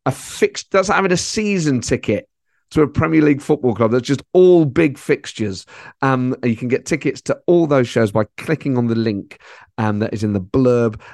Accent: British